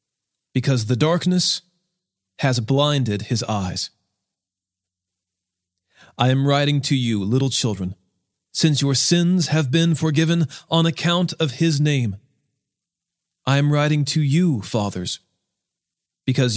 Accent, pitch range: American, 115-165 Hz